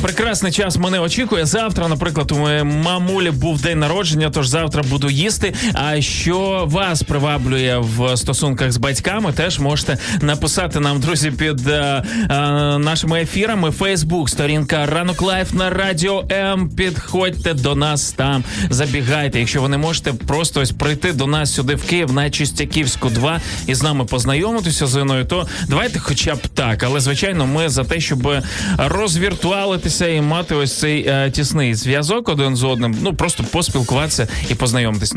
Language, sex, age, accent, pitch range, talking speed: Ukrainian, male, 20-39, native, 135-165 Hz, 160 wpm